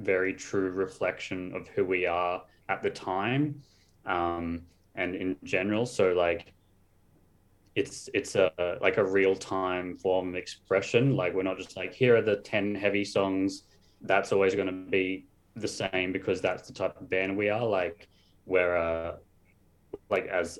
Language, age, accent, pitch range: English, 20-39, Australian, 85-95 Hz